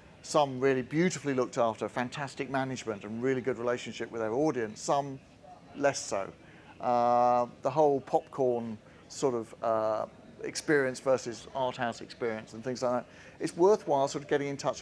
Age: 50-69